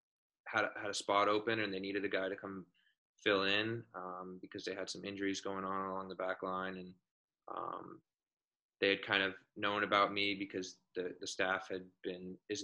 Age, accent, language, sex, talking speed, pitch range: 20-39, American, English, male, 205 wpm, 90-100 Hz